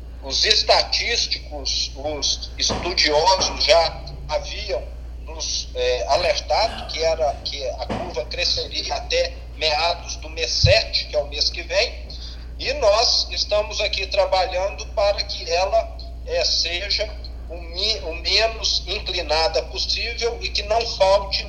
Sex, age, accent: male, 50-69, Brazilian